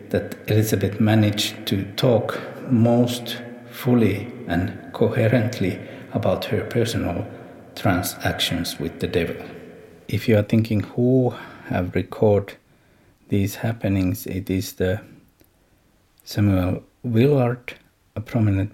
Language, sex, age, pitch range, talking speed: Finnish, male, 50-69, 95-120 Hz, 100 wpm